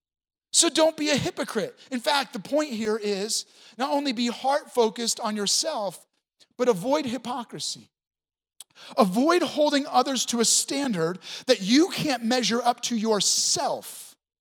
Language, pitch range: English, 220-275 Hz